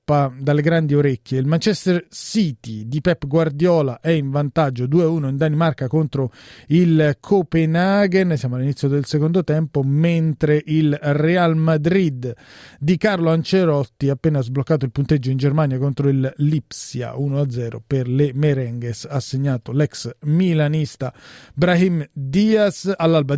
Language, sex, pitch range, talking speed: Italian, male, 135-165 Hz, 130 wpm